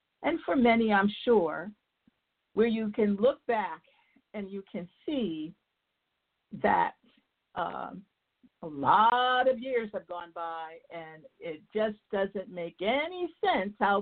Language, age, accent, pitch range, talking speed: English, 50-69, American, 165-230 Hz, 135 wpm